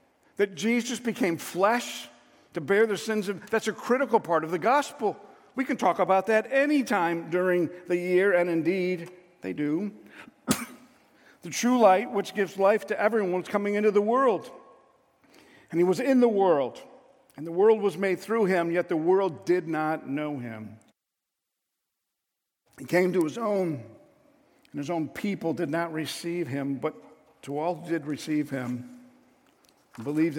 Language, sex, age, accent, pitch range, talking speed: English, male, 50-69, American, 135-200 Hz, 165 wpm